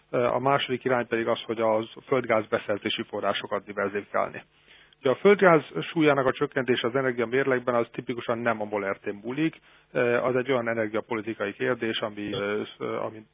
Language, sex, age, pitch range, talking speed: Hungarian, male, 30-49, 110-135 Hz, 145 wpm